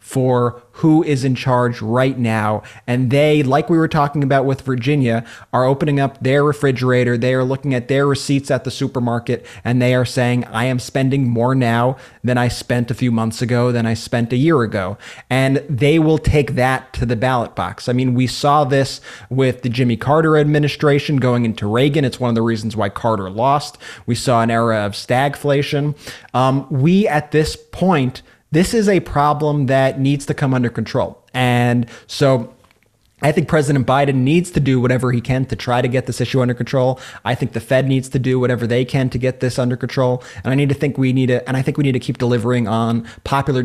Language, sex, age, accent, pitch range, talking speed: English, male, 20-39, American, 120-140 Hz, 215 wpm